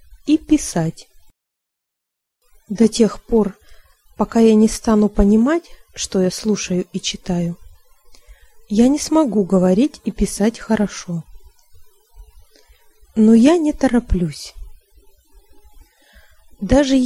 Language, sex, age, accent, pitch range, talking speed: Russian, female, 20-39, native, 185-245 Hz, 95 wpm